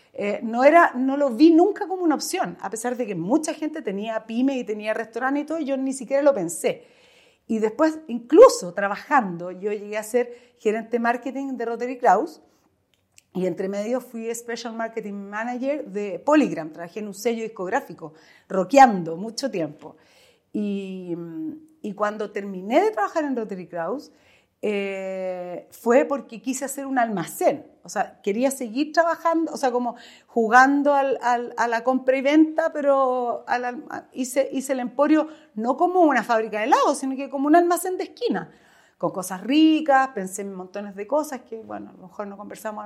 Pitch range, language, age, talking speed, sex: 210-285 Hz, Spanish, 40-59, 170 wpm, female